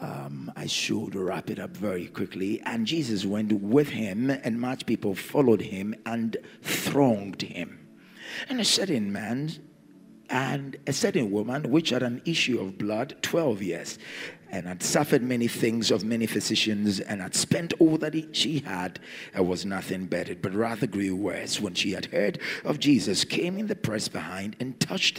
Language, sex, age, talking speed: English, male, 50-69, 175 wpm